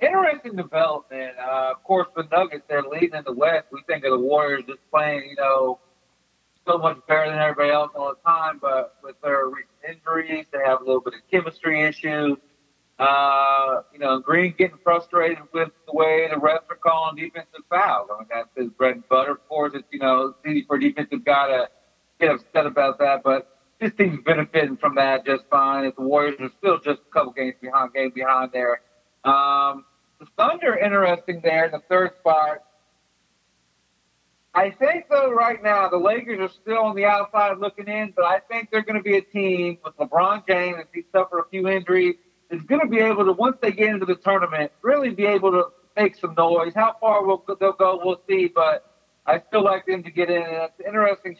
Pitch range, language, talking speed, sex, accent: 140-190 Hz, English, 200 wpm, male, American